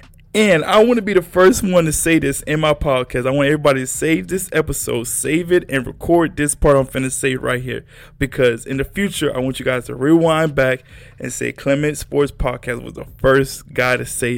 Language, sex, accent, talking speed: English, male, American, 225 wpm